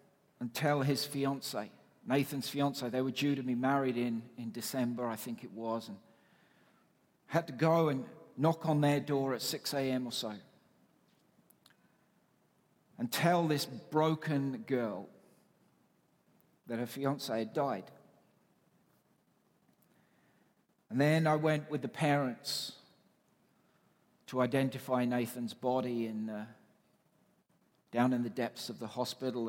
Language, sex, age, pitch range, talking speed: English, male, 50-69, 125-160 Hz, 130 wpm